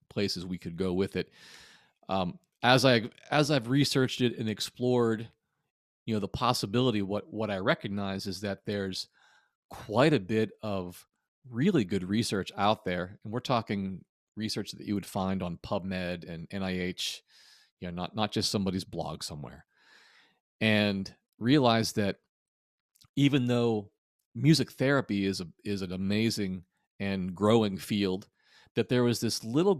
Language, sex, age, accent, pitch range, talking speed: English, male, 40-59, American, 95-120 Hz, 150 wpm